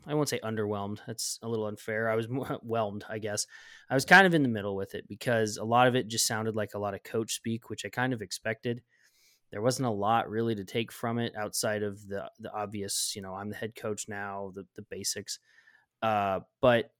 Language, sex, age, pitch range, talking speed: English, male, 20-39, 105-125 Hz, 235 wpm